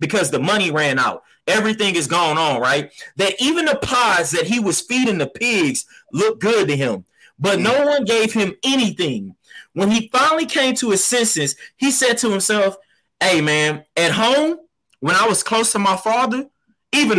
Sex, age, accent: male, 20-39, American